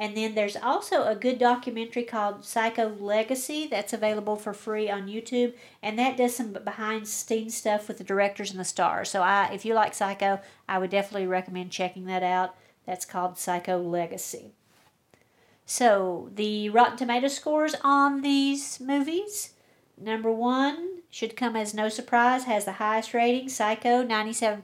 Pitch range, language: 205-245 Hz, English